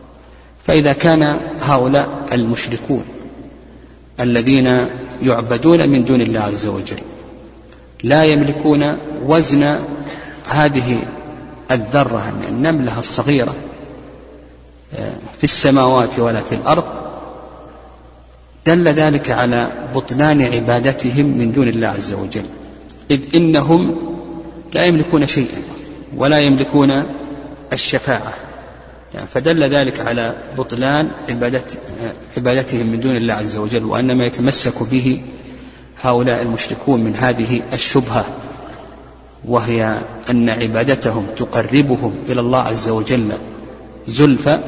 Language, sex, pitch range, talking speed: Arabic, male, 115-145 Hz, 95 wpm